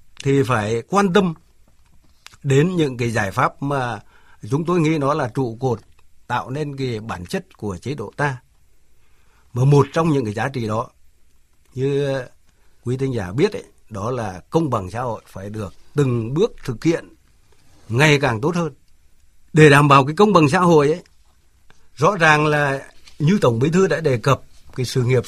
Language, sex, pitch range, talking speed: Vietnamese, male, 110-155 Hz, 185 wpm